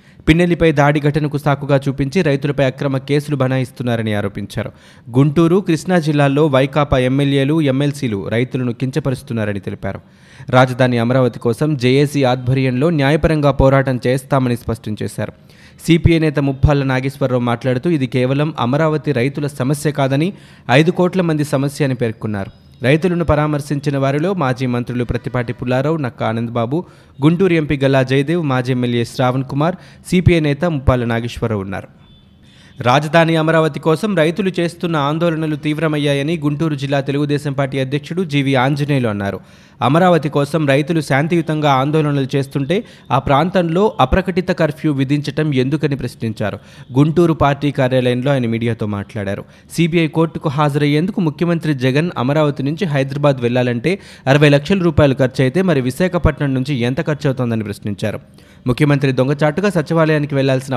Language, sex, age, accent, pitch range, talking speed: Telugu, male, 20-39, native, 130-155 Hz, 125 wpm